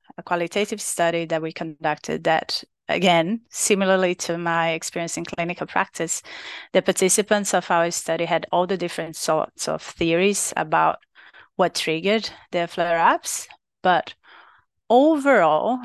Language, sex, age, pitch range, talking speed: English, female, 30-49, 160-185 Hz, 135 wpm